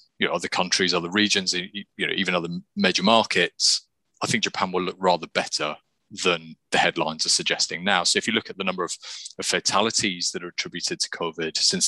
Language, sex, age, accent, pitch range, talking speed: English, male, 30-49, British, 90-120 Hz, 205 wpm